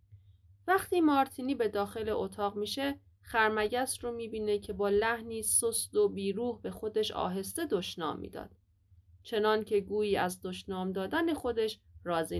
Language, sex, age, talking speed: Persian, female, 30-49, 140 wpm